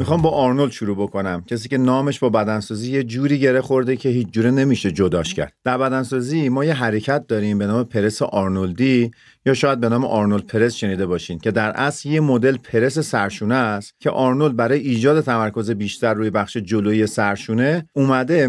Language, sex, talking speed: Persian, male, 185 wpm